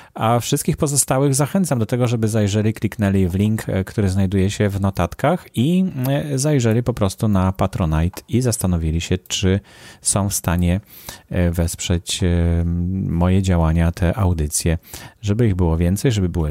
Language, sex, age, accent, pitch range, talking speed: Polish, male, 30-49, native, 90-120 Hz, 145 wpm